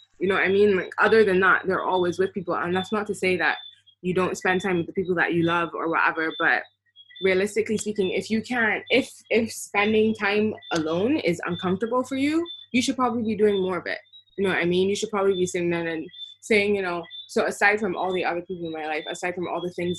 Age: 20-39